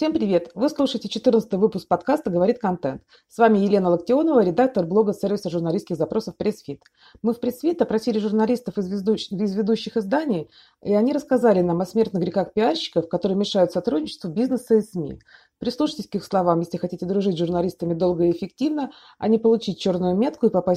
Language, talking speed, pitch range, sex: Russian, 180 wpm, 180-235 Hz, female